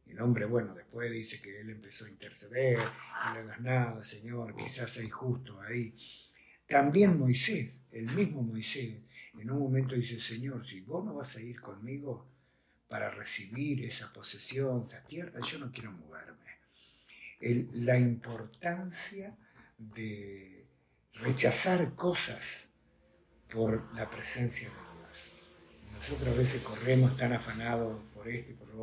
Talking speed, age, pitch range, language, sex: 140 wpm, 50-69, 110-130 Hz, Spanish, male